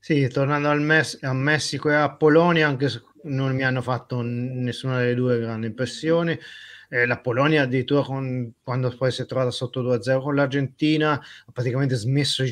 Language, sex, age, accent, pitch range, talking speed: Italian, male, 30-49, native, 120-145 Hz, 185 wpm